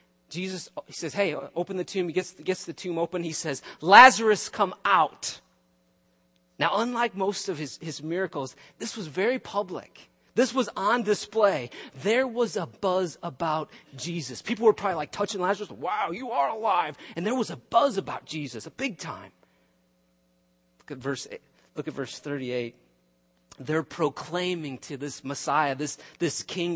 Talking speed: 170 wpm